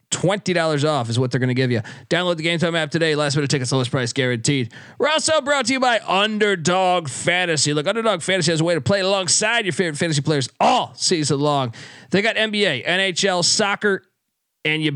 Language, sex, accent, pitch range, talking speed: English, male, American, 140-180 Hz, 210 wpm